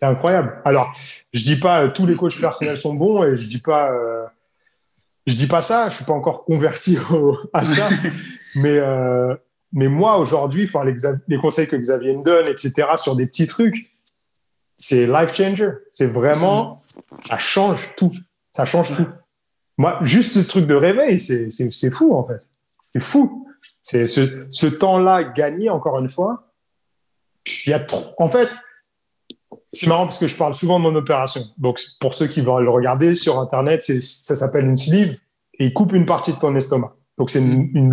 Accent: French